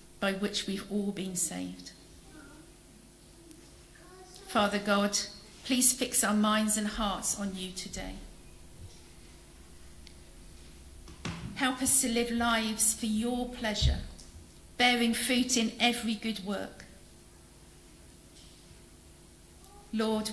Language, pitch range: English, 175-220 Hz